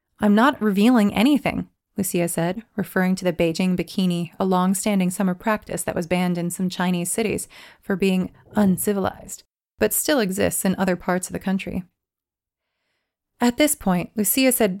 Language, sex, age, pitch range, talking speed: English, female, 30-49, 175-210 Hz, 160 wpm